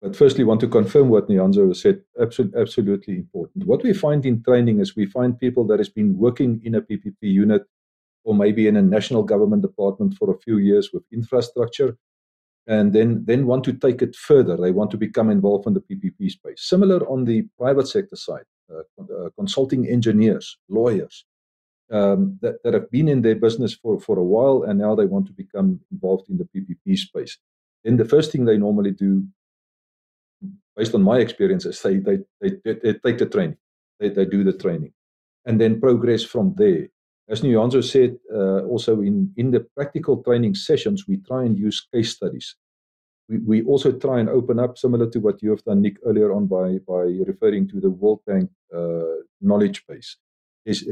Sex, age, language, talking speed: male, 50-69, English, 195 wpm